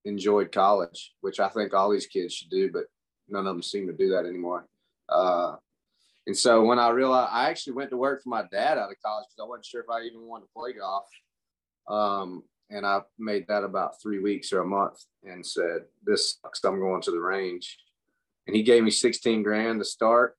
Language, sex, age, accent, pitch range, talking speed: English, male, 30-49, American, 95-115 Hz, 220 wpm